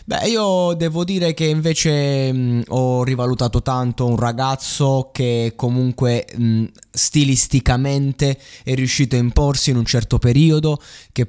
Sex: male